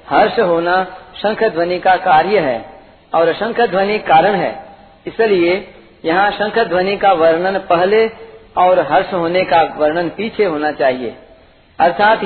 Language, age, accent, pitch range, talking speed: Hindi, 50-69, native, 170-220 Hz, 135 wpm